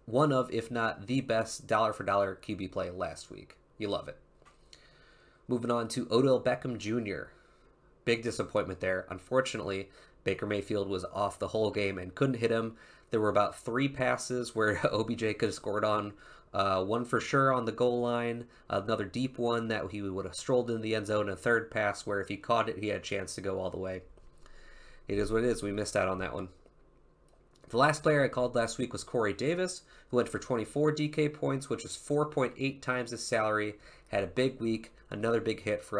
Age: 20-39